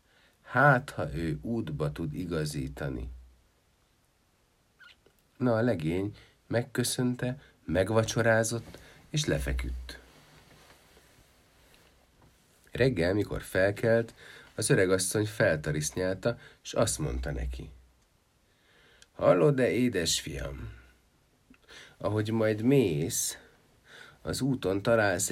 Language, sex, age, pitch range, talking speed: Hungarian, male, 50-69, 85-115 Hz, 80 wpm